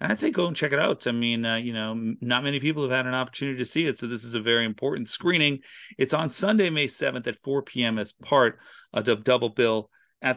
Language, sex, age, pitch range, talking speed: English, male, 40-59, 95-125 Hz, 260 wpm